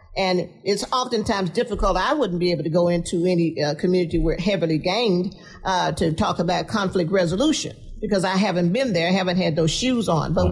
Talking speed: 195 wpm